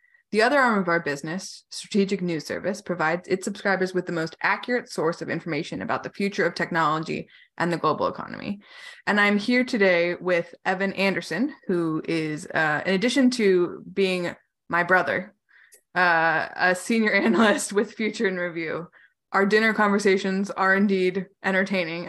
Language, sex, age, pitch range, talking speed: English, female, 20-39, 175-215 Hz, 160 wpm